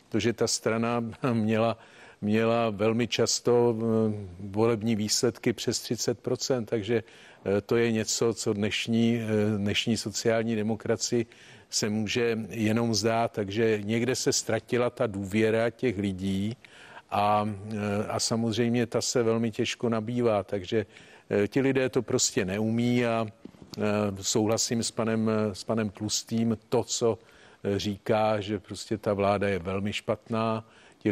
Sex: male